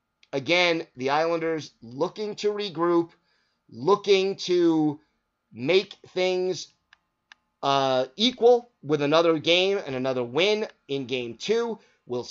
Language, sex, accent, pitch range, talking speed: English, male, American, 140-185 Hz, 105 wpm